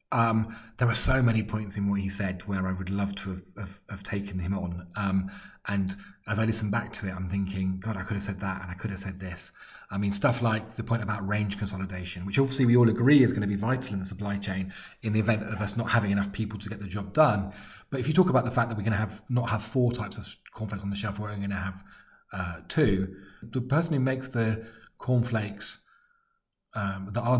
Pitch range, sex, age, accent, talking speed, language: 95-120 Hz, male, 30-49, British, 255 wpm, English